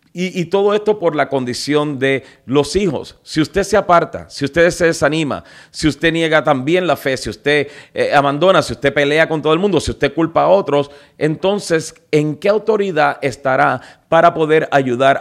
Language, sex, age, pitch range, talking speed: Spanish, male, 40-59, 140-175 Hz, 190 wpm